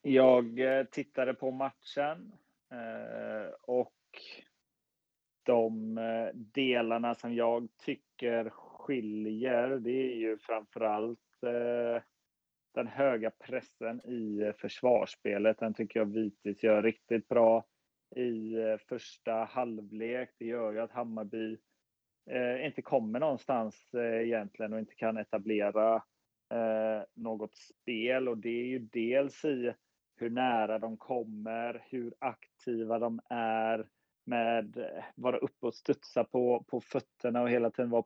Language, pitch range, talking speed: Swedish, 115-125 Hz, 115 wpm